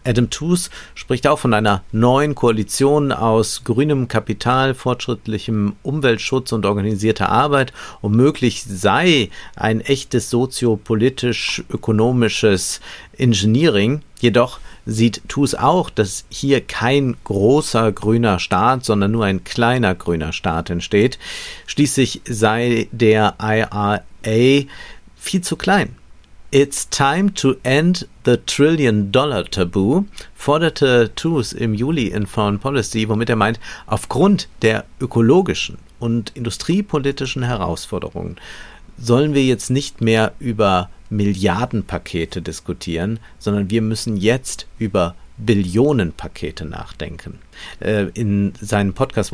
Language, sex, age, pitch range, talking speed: German, male, 50-69, 95-125 Hz, 105 wpm